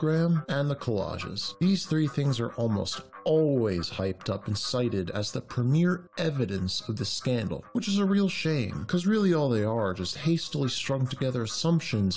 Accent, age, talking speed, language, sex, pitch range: American, 40-59, 175 wpm, Finnish, male, 105-155 Hz